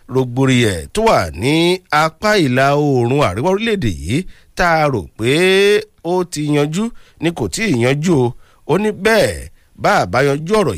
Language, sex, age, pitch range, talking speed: English, male, 50-69, 105-175 Hz, 115 wpm